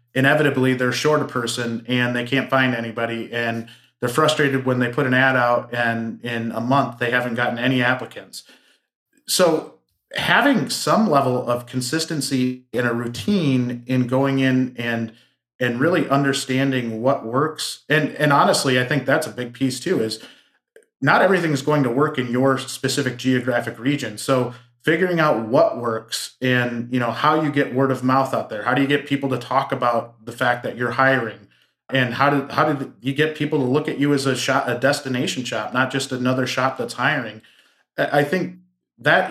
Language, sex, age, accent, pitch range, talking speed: English, male, 30-49, American, 120-140 Hz, 190 wpm